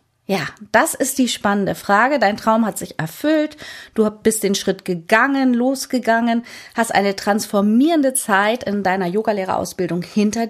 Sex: female